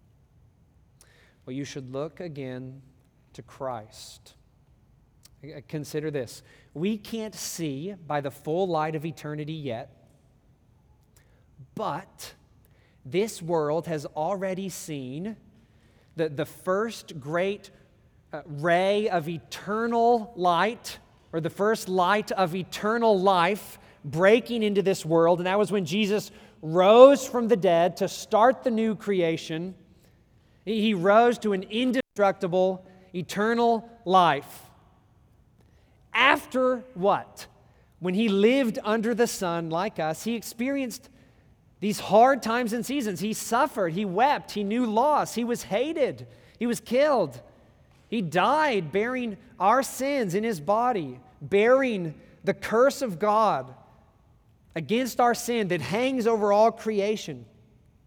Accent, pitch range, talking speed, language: American, 155-225 Hz, 120 wpm, English